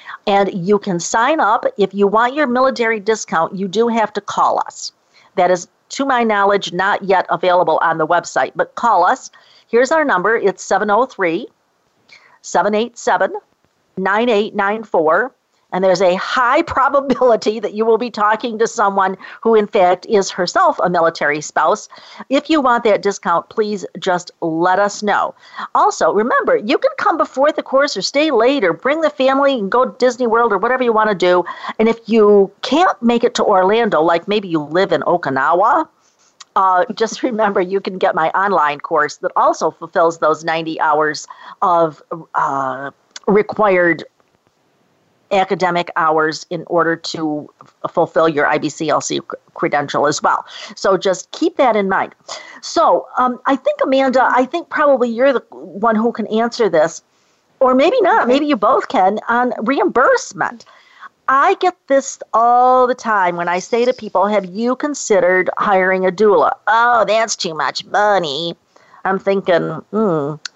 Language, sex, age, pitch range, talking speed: English, female, 50-69, 180-245 Hz, 160 wpm